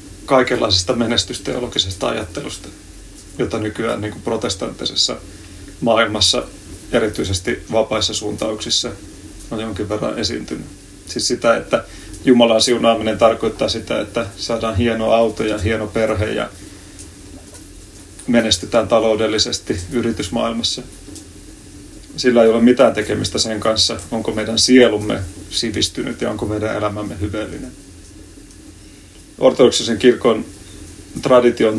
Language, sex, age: Finnish, male, 30-49